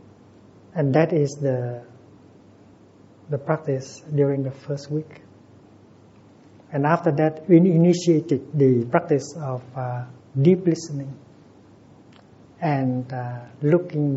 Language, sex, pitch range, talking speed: English, male, 130-160 Hz, 100 wpm